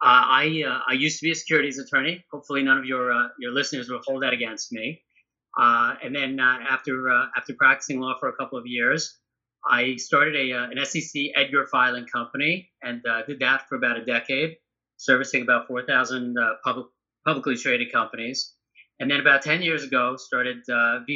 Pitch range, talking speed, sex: 125-155 Hz, 200 wpm, male